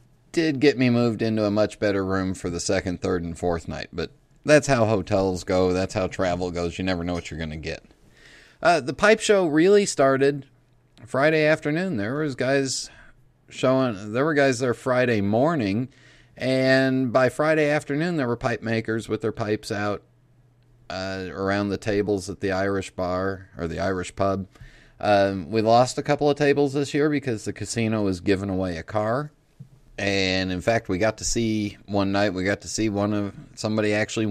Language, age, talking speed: English, 30-49, 185 wpm